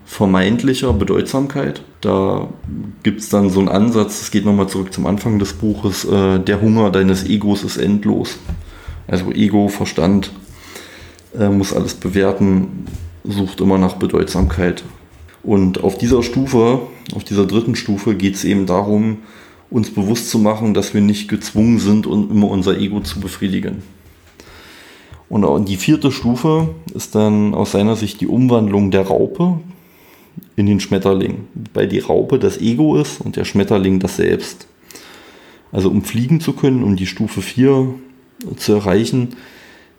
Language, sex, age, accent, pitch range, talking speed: German, male, 30-49, German, 95-120 Hz, 150 wpm